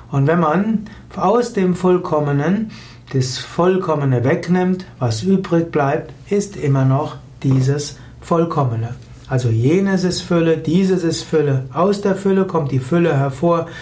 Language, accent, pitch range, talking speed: German, German, 135-180 Hz, 135 wpm